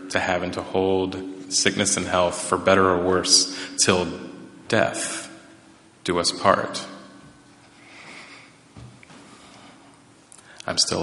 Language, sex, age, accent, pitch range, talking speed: English, male, 30-49, American, 95-105 Hz, 105 wpm